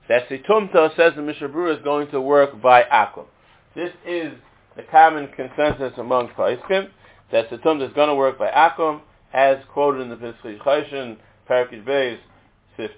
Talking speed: 160 wpm